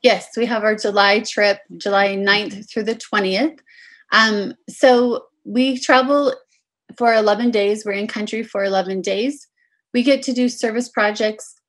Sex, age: female, 20-39